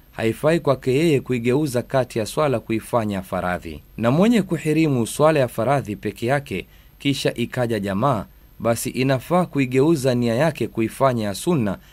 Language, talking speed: Swahili, 140 wpm